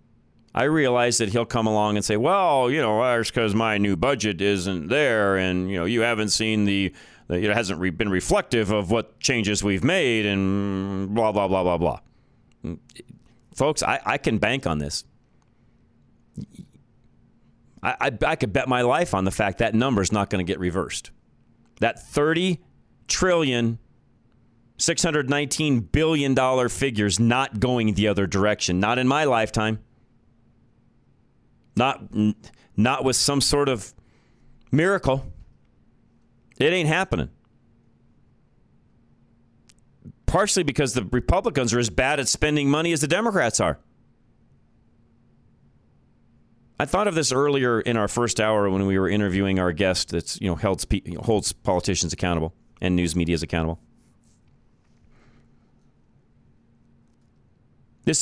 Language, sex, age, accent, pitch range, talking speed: English, male, 40-59, American, 100-130 Hz, 145 wpm